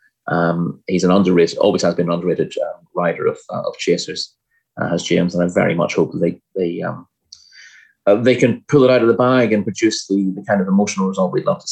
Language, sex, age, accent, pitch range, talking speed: English, male, 30-49, British, 90-105 Hz, 240 wpm